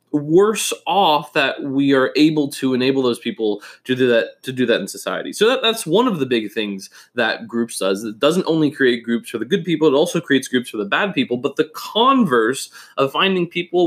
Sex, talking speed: male, 225 wpm